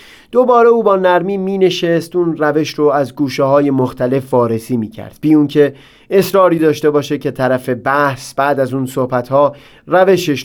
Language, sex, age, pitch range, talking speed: Persian, male, 30-49, 125-160 Hz, 165 wpm